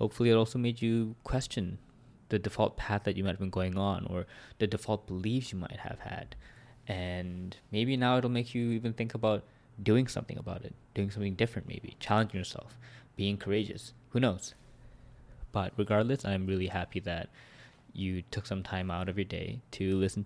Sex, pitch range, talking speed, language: male, 95-120 Hz, 185 wpm, English